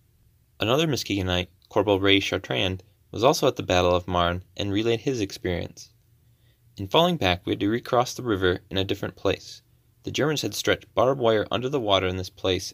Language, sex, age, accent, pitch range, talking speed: English, male, 20-39, American, 95-120 Hz, 195 wpm